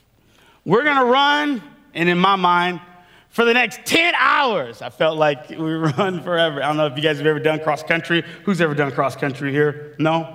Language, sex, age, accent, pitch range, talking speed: English, male, 30-49, American, 165-260 Hz, 210 wpm